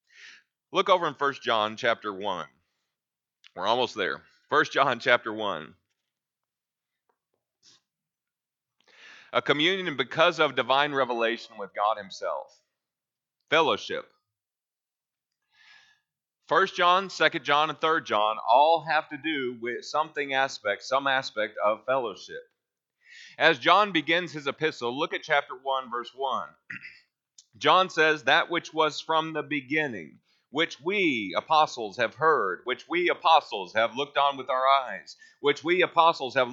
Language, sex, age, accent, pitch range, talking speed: English, male, 30-49, American, 135-180 Hz, 130 wpm